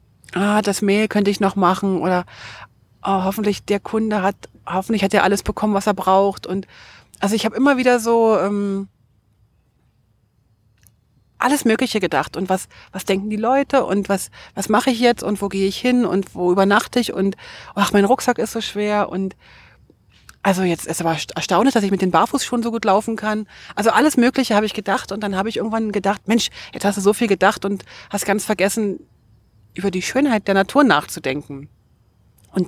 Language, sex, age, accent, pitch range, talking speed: German, female, 40-59, German, 160-215 Hz, 195 wpm